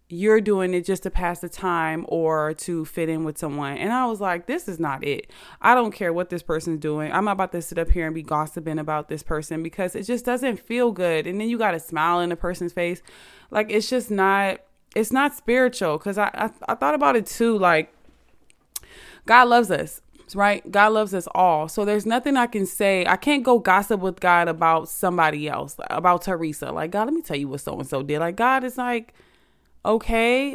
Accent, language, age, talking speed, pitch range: American, English, 20-39, 220 wpm, 170-220 Hz